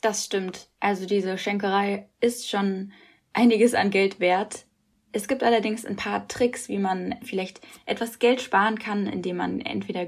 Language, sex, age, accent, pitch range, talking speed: German, female, 10-29, German, 185-230 Hz, 160 wpm